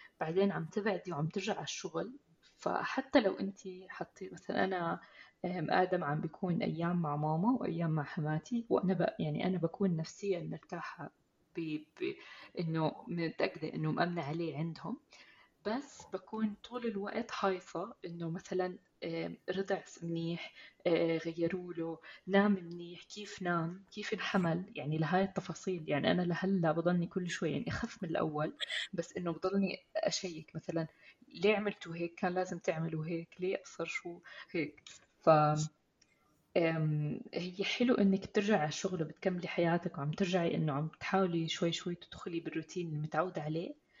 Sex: female